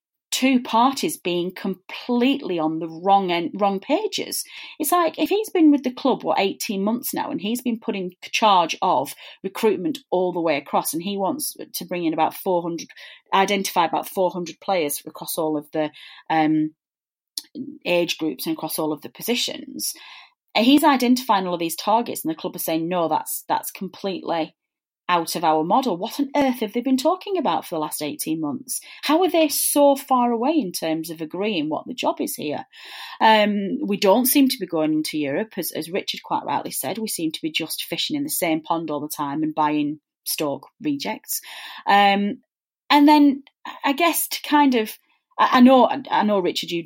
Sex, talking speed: female, 200 wpm